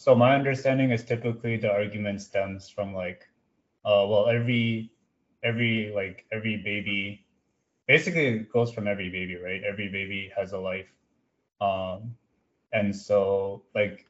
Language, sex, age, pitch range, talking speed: English, male, 20-39, 100-130 Hz, 140 wpm